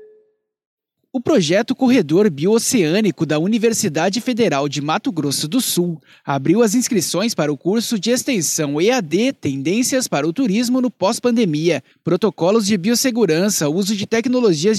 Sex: male